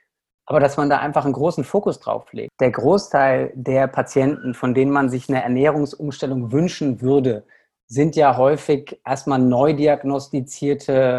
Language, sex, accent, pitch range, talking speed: German, male, German, 125-145 Hz, 150 wpm